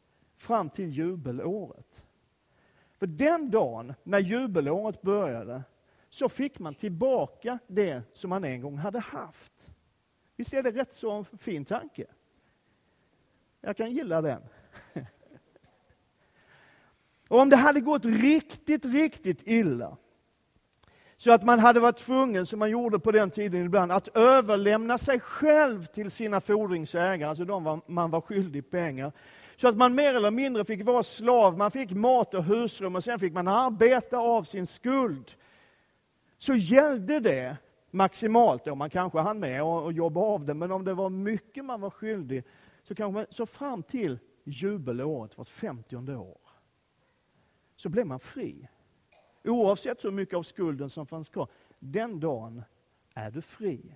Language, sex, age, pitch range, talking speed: Swedish, male, 40-59, 165-240 Hz, 150 wpm